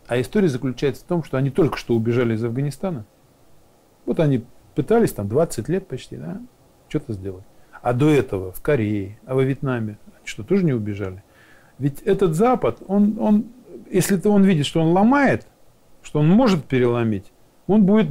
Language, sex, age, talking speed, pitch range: Russian, male, 40-59, 175 wpm, 120-180 Hz